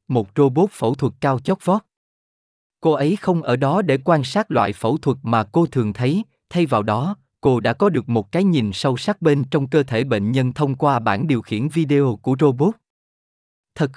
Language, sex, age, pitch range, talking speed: Vietnamese, male, 20-39, 115-160 Hz, 210 wpm